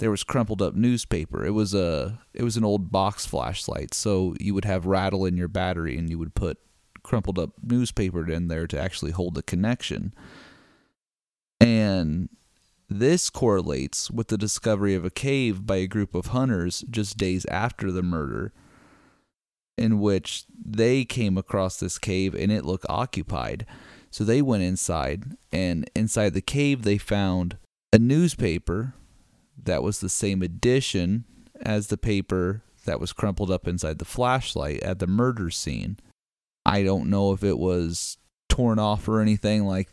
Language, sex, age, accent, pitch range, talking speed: English, male, 30-49, American, 90-110 Hz, 160 wpm